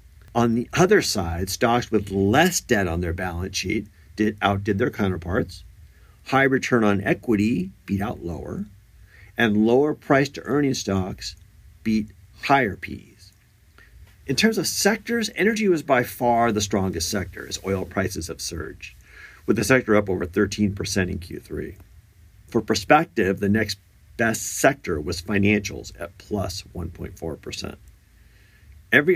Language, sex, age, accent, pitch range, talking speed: English, male, 50-69, American, 95-110 Hz, 135 wpm